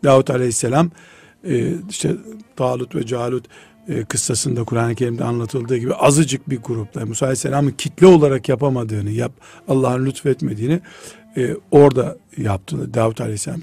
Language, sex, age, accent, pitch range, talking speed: Turkish, male, 60-79, native, 120-165 Hz, 110 wpm